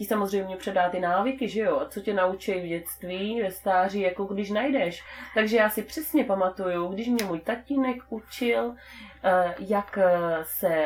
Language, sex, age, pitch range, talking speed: Czech, female, 30-49, 175-220 Hz, 160 wpm